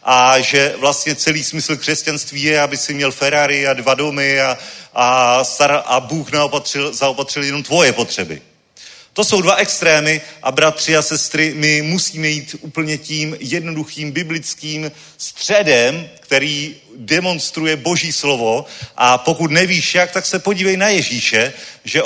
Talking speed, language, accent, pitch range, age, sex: 145 wpm, Czech, native, 140-165 Hz, 40-59, male